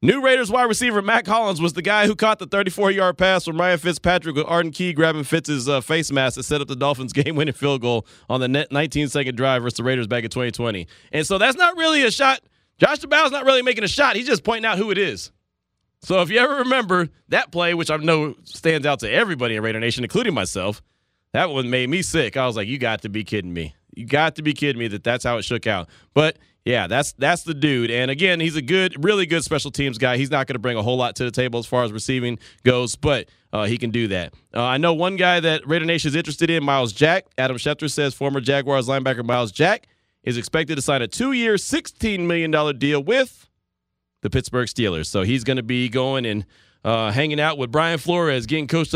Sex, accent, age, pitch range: male, American, 30-49, 120-165 Hz